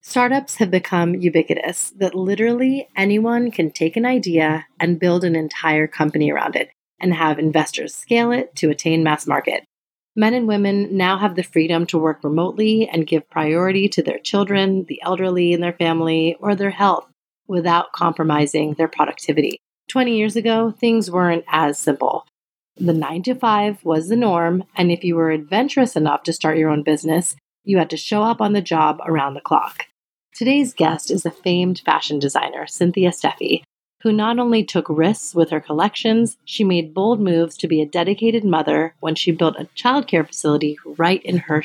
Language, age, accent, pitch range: English, 30-49, American, 160-205 Hz